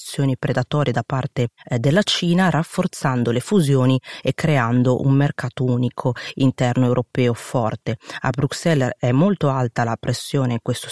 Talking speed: 135 wpm